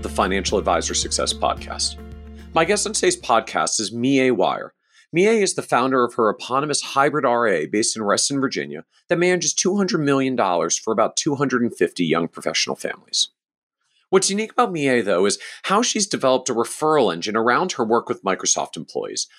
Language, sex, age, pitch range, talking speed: English, male, 40-59, 120-185 Hz, 165 wpm